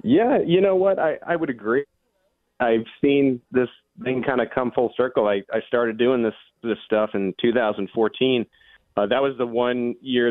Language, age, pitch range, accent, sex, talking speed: English, 30-49, 110-125 Hz, American, male, 185 wpm